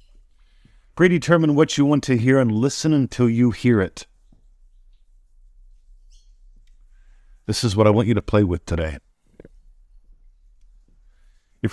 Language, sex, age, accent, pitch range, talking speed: English, male, 50-69, American, 85-120 Hz, 120 wpm